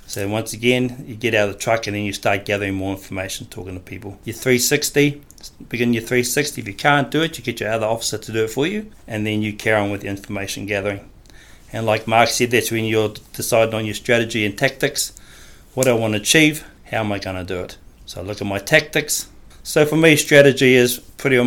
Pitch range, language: 100-120 Hz, English